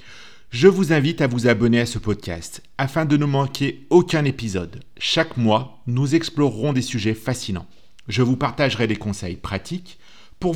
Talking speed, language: 165 wpm, French